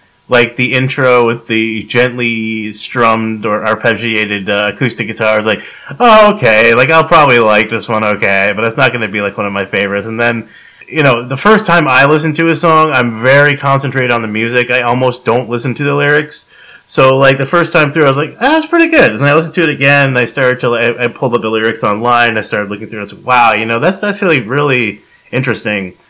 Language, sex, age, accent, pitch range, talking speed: English, male, 30-49, American, 110-150 Hz, 245 wpm